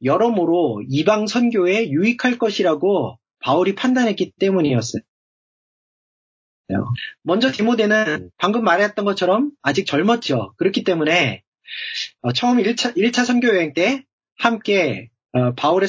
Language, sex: Korean, male